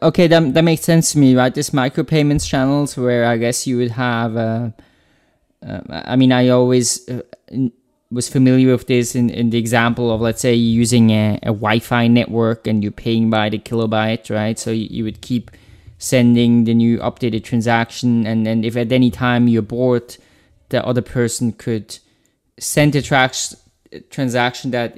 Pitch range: 115-130 Hz